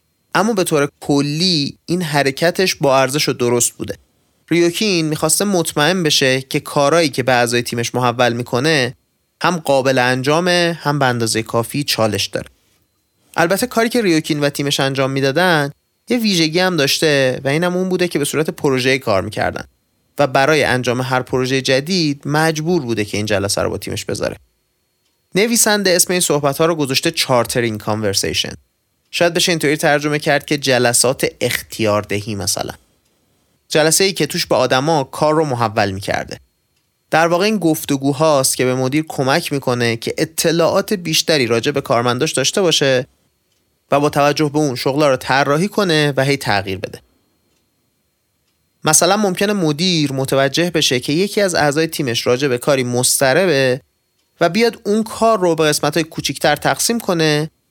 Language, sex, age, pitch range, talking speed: Persian, male, 30-49, 130-170 Hz, 155 wpm